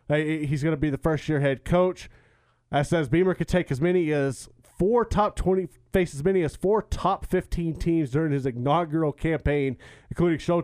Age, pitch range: 30-49, 140-165 Hz